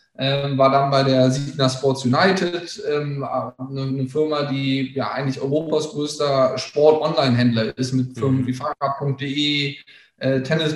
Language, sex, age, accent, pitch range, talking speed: German, male, 10-29, German, 140-160 Hz, 140 wpm